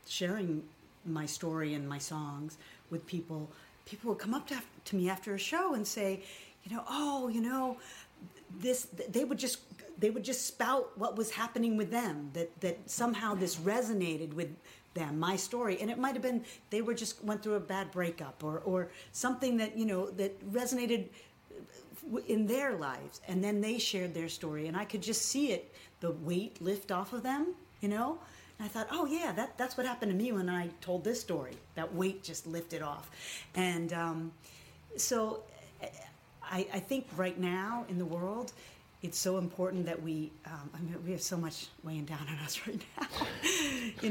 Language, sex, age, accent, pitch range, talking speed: English, female, 40-59, American, 165-225 Hz, 190 wpm